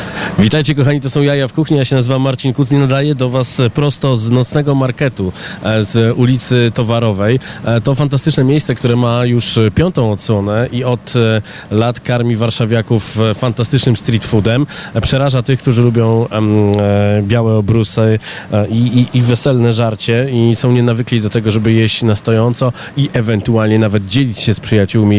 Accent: native